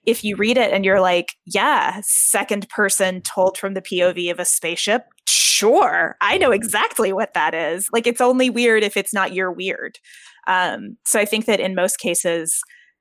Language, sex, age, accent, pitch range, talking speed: English, female, 20-39, American, 175-215 Hz, 190 wpm